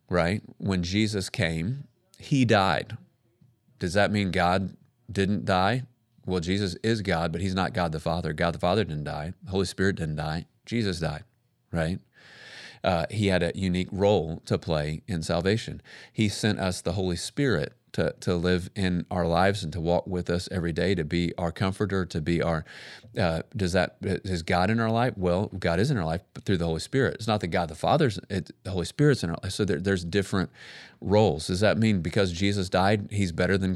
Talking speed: 210 wpm